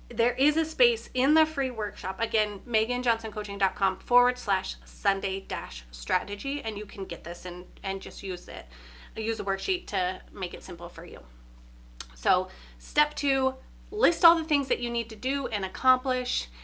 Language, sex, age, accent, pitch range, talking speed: English, female, 30-49, American, 185-260 Hz, 175 wpm